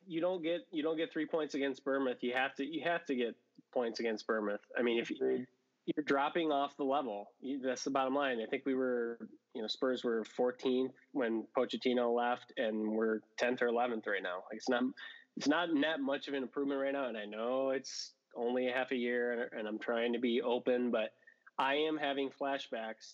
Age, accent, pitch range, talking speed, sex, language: 20-39, American, 120-145 Hz, 220 wpm, male, English